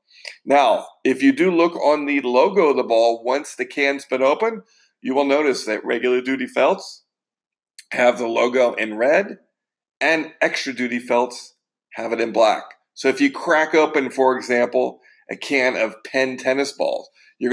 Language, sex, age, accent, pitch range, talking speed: English, male, 40-59, American, 130-155 Hz, 170 wpm